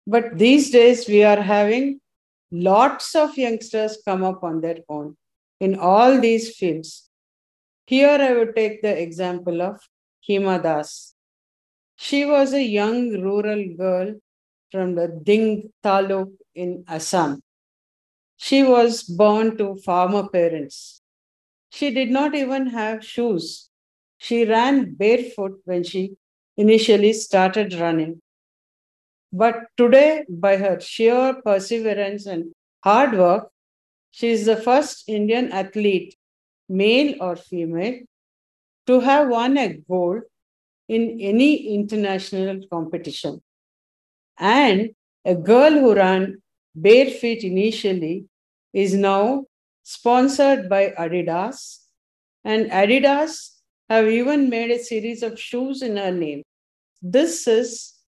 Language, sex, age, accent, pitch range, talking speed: English, female, 50-69, Indian, 185-235 Hz, 115 wpm